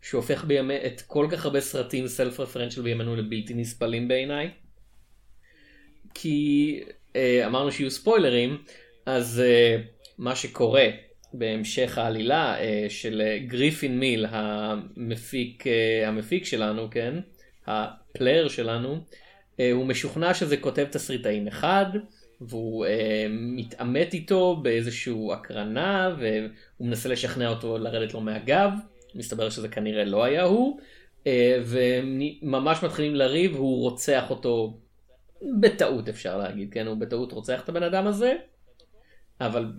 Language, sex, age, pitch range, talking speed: Hebrew, male, 20-39, 115-165 Hz, 110 wpm